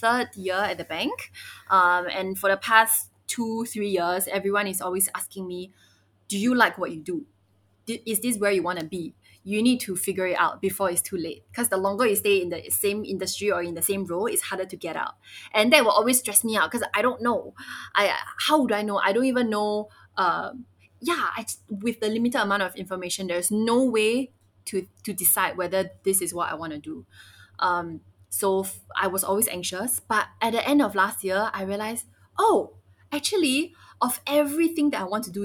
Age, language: 20-39, Chinese